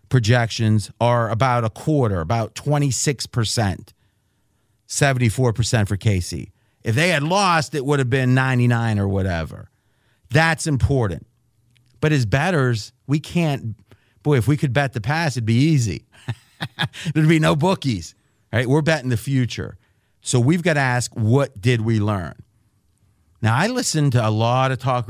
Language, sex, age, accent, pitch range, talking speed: English, male, 40-59, American, 110-140 Hz, 155 wpm